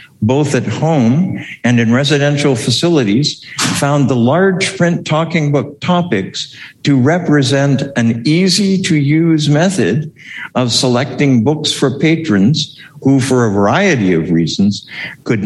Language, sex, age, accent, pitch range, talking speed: English, male, 60-79, American, 110-155 Hz, 130 wpm